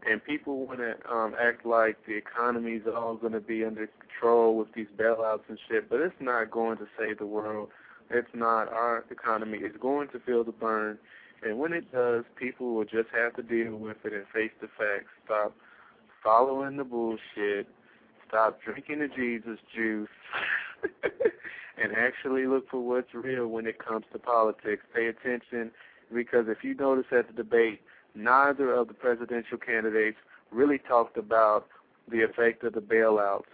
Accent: American